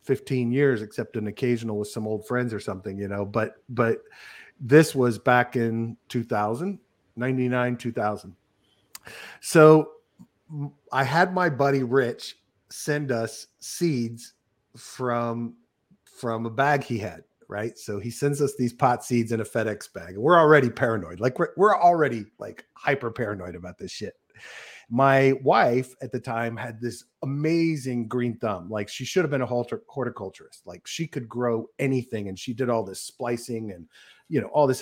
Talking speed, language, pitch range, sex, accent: 165 wpm, English, 115-140 Hz, male, American